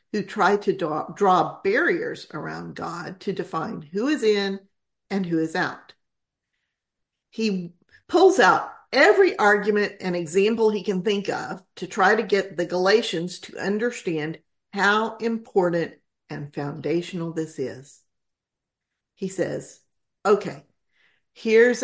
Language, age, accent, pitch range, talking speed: English, 50-69, American, 175-240 Hz, 125 wpm